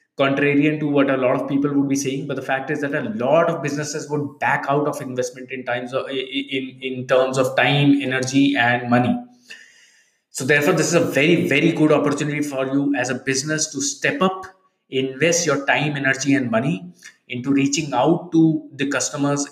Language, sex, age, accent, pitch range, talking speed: English, male, 20-39, Indian, 130-155 Hz, 190 wpm